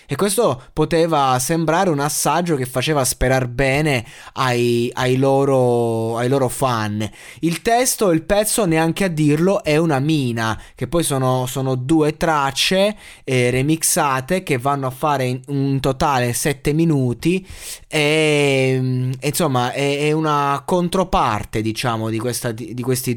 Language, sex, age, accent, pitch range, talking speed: Italian, male, 20-39, native, 125-165 Hz, 140 wpm